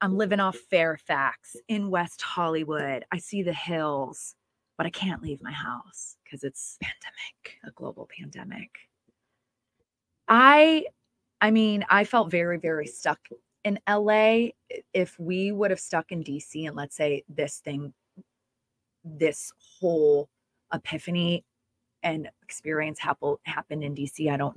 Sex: female